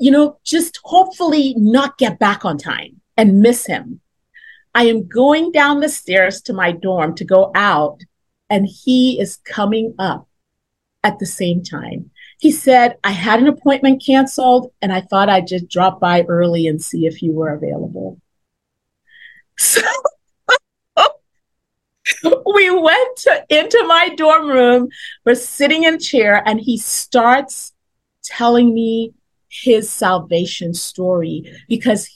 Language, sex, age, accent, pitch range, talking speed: English, female, 40-59, American, 190-280 Hz, 140 wpm